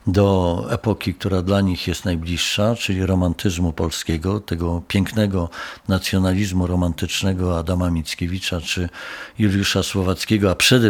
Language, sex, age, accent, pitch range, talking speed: Polish, male, 50-69, native, 90-110 Hz, 115 wpm